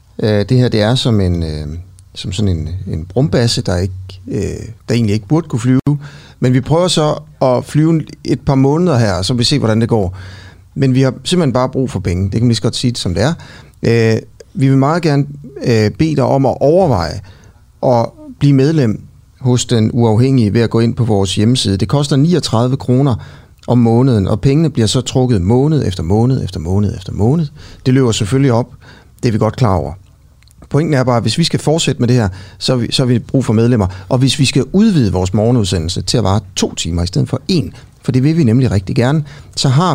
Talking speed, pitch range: 215 wpm, 105-135 Hz